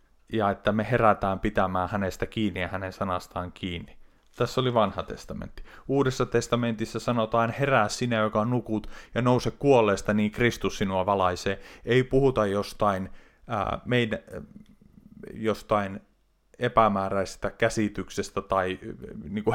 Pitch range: 95-120 Hz